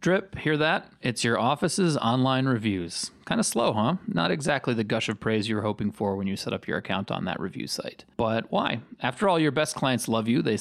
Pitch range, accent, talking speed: 110-150 Hz, American, 240 wpm